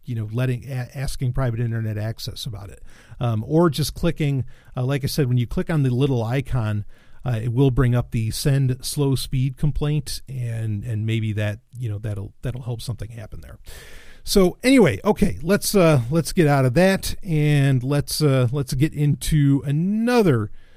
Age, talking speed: 40-59, 180 wpm